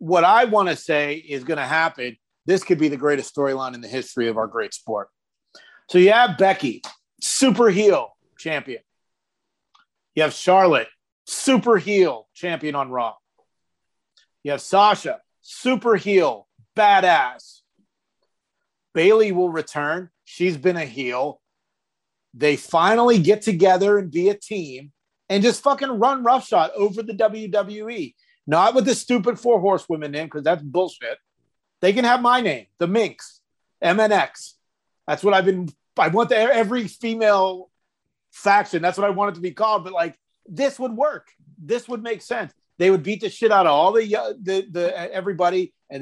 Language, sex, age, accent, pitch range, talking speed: English, male, 40-59, American, 155-220 Hz, 165 wpm